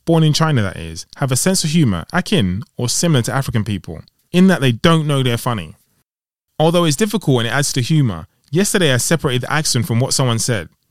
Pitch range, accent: 110-160 Hz, British